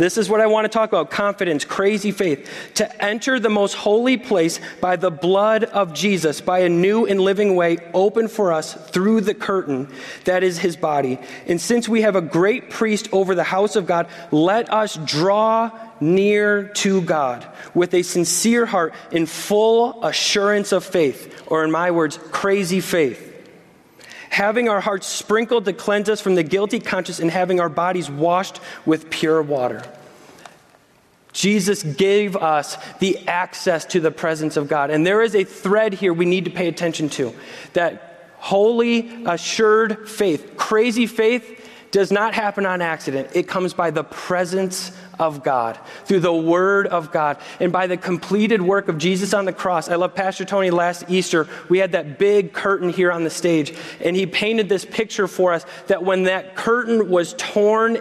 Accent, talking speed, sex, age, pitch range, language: American, 180 wpm, male, 30-49, 170-210 Hz, English